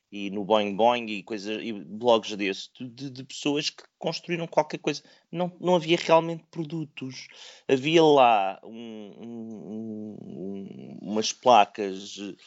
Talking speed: 115 wpm